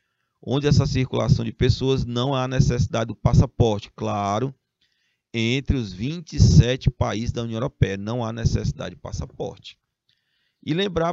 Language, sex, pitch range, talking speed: Portuguese, male, 110-140 Hz, 135 wpm